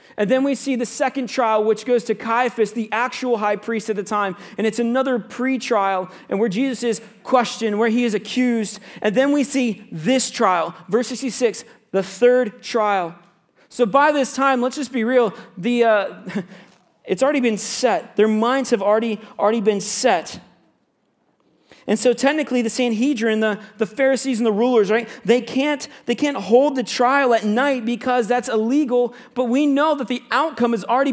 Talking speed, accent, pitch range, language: 180 wpm, American, 195-250 Hz, English